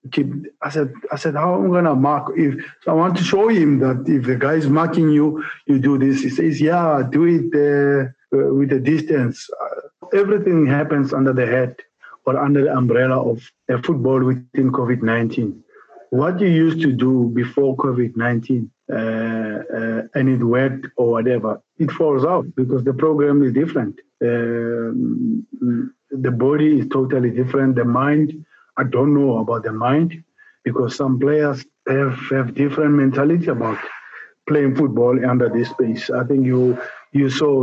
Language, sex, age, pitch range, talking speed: English, male, 50-69, 125-145 Hz, 160 wpm